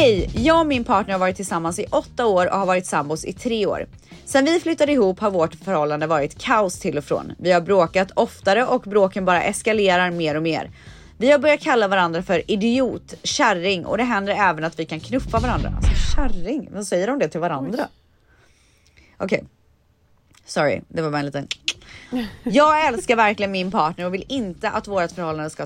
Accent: native